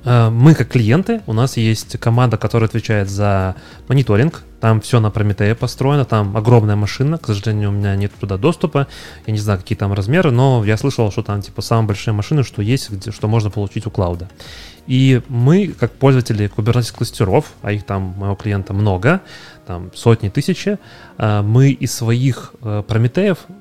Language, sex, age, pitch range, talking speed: Russian, male, 20-39, 100-125 Hz, 170 wpm